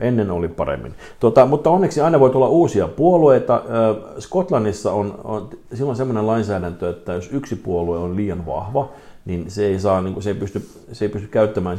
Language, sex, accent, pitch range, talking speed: Finnish, male, native, 85-110 Hz, 190 wpm